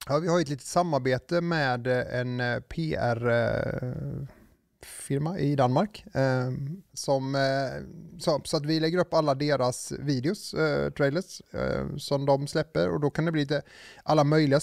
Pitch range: 130-160 Hz